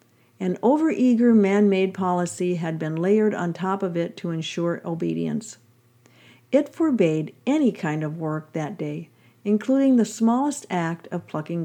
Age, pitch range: 50-69, 160-220 Hz